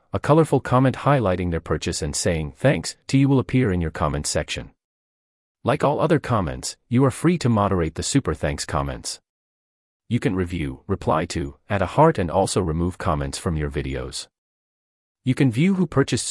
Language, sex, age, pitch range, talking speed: English, male, 30-49, 75-115 Hz, 185 wpm